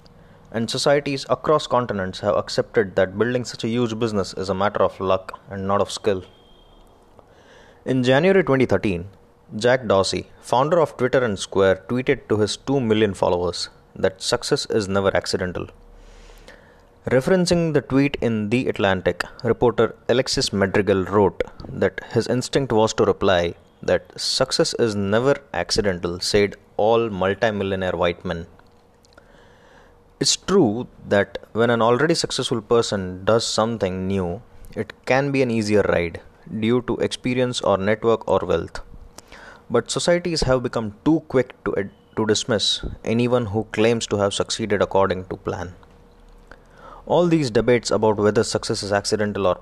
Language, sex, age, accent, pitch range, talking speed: English, male, 20-39, Indian, 95-125 Hz, 145 wpm